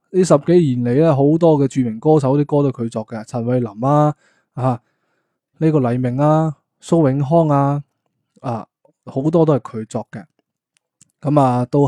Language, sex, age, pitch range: Chinese, male, 20-39, 125-150 Hz